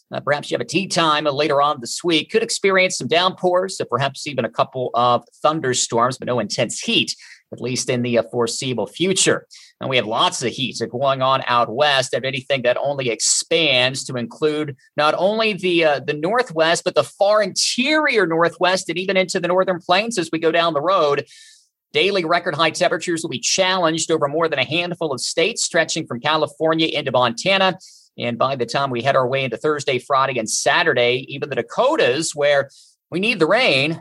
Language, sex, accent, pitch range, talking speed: English, male, American, 125-175 Hz, 200 wpm